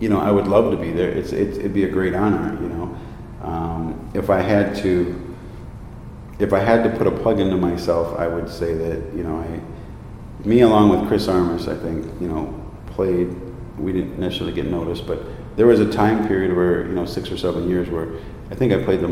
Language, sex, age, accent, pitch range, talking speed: English, male, 40-59, American, 85-105 Hz, 225 wpm